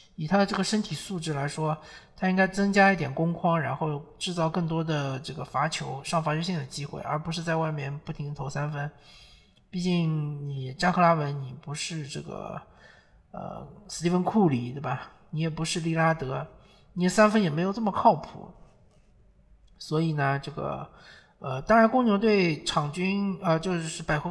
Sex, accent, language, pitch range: male, native, Chinese, 150-195 Hz